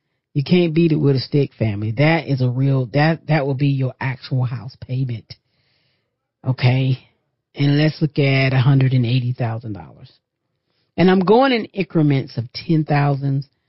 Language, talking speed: English, 145 wpm